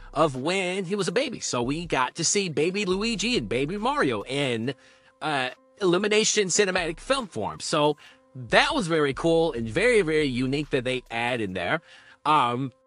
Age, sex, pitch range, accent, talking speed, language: 40-59, male, 130-205 Hz, American, 175 wpm, English